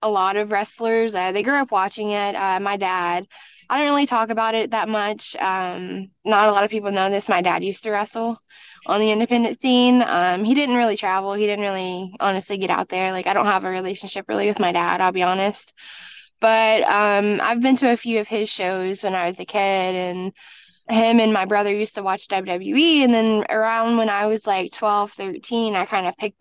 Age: 10-29